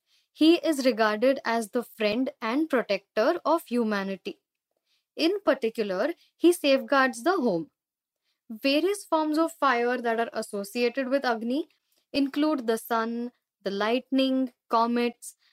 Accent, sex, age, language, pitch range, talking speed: native, female, 10-29, Marathi, 225-295 Hz, 120 wpm